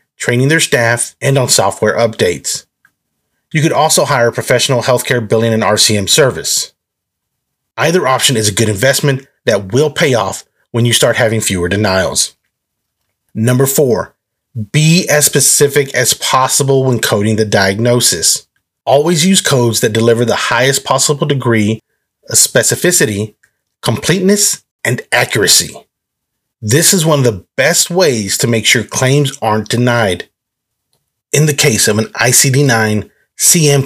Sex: male